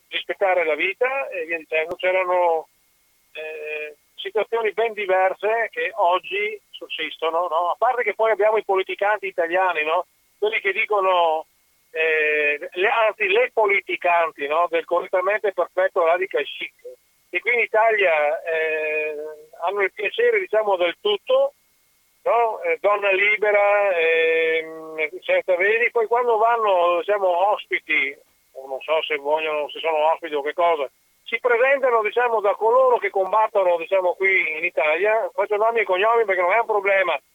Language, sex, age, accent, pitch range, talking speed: Italian, male, 50-69, native, 170-255 Hz, 150 wpm